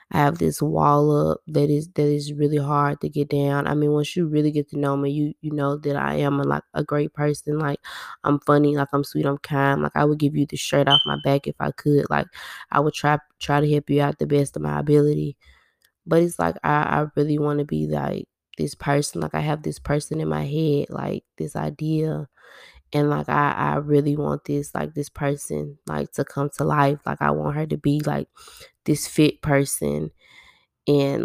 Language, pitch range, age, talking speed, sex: English, 140-145 Hz, 20-39, 225 wpm, female